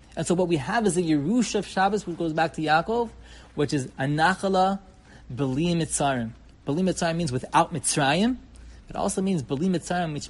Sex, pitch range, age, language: male, 125-160 Hz, 30-49, English